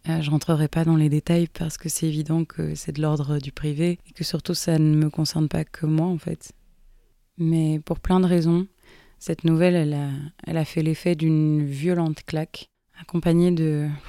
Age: 20-39